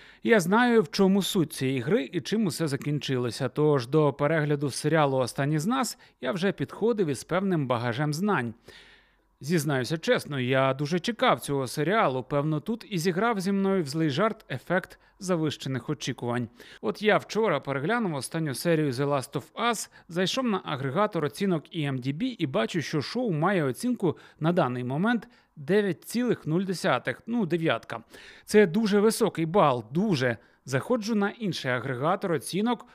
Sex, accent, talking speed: male, native, 150 wpm